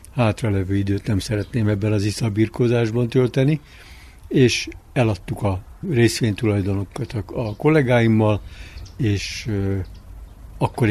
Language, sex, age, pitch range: Hungarian, male, 60-79, 95-120 Hz